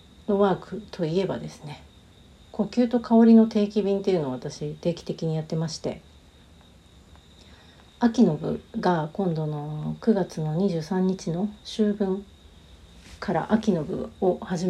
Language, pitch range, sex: Japanese, 150-195 Hz, female